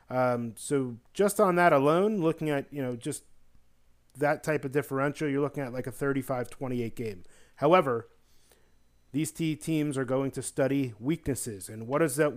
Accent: American